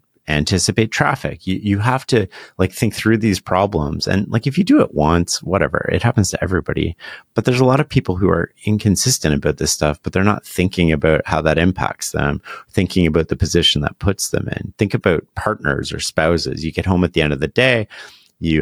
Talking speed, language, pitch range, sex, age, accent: 215 wpm, English, 80-105 Hz, male, 30-49, American